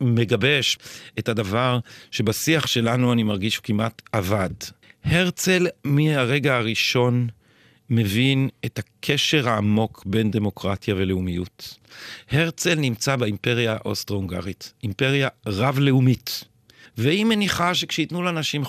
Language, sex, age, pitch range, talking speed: Hebrew, male, 50-69, 115-145 Hz, 95 wpm